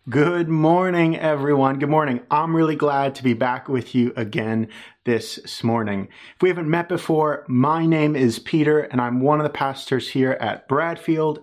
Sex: male